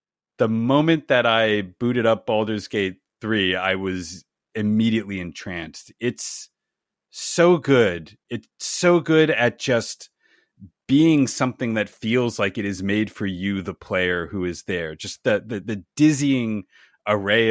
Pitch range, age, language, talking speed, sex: 95-125 Hz, 30-49, English, 145 wpm, male